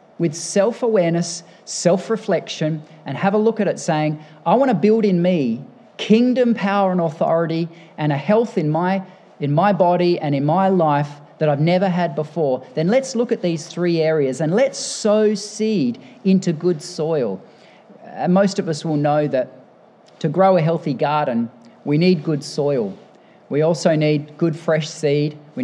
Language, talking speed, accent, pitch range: English, 170 wpm, Australian, 150-195 Hz